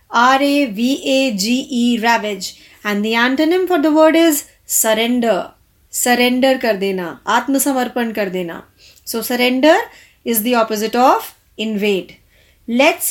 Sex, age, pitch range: female, 30-49, 230-295 Hz